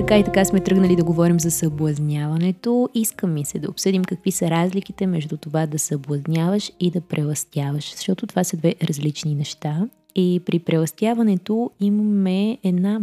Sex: female